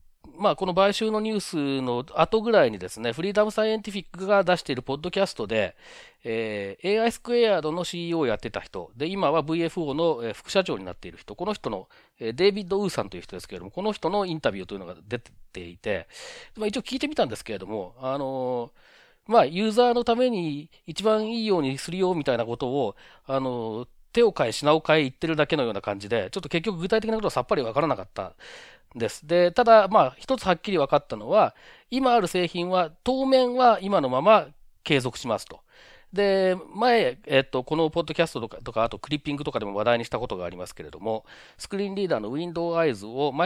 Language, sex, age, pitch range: Japanese, male, 40-59, 135-205 Hz